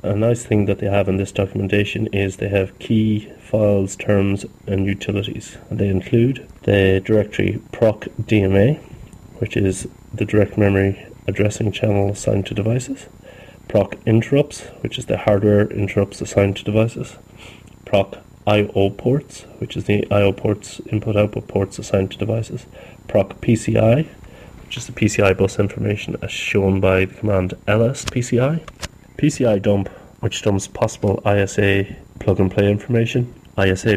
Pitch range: 100-115 Hz